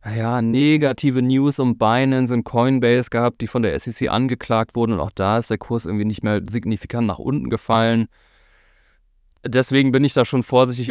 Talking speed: 180 wpm